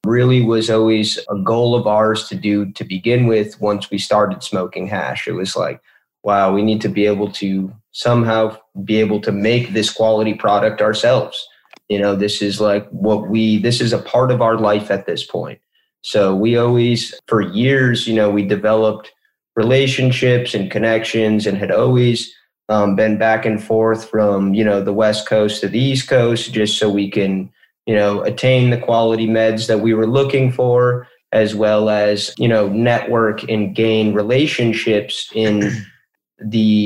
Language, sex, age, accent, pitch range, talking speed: English, male, 30-49, American, 105-115 Hz, 175 wpm